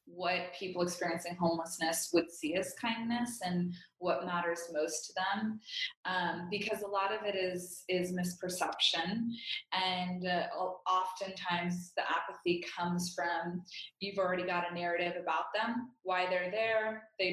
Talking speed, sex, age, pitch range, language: 140 wpm, female, 20-39, 180-210 Hz, English